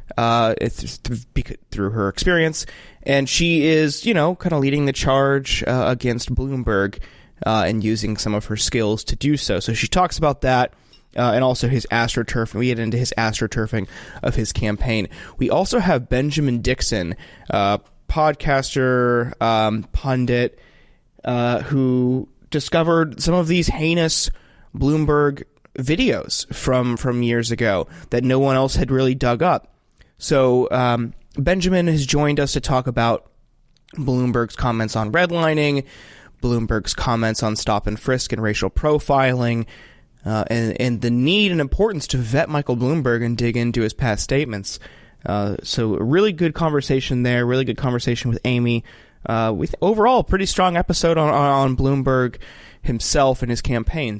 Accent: American